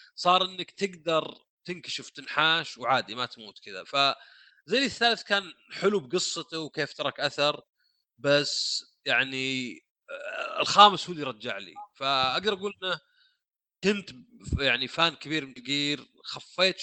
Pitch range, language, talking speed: 130-180 Hz, Arabic, 120 wpm